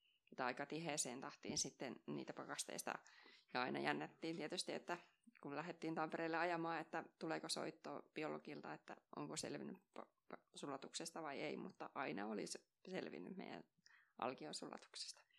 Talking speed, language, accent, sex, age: 130 wpm, Finnish, native, female, 20-39